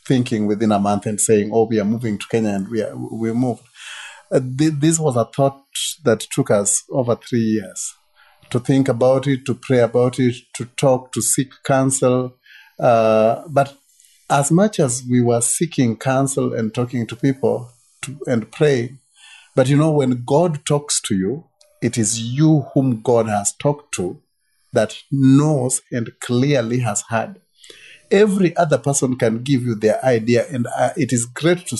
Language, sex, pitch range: English, male, 115-140 Hz